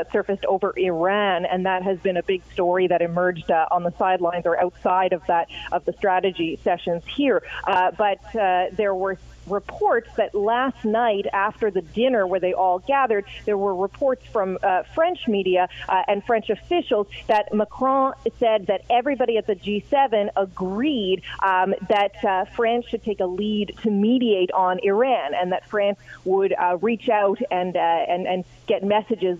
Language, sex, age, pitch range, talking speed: English, female, 30-49, 185-220 Hz, 175 wpm